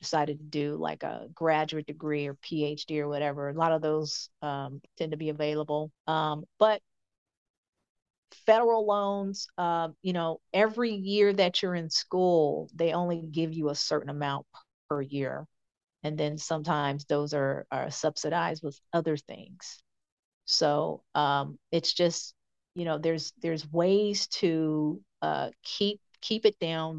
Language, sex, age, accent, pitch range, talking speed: English, female, 40-59, American, 150-175 Hz, 145 wpm